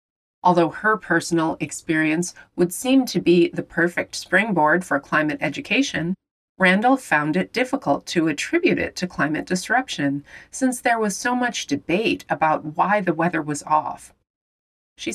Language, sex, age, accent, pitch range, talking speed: English, female, 30-49, American, 160-230 Hz, 145 wpm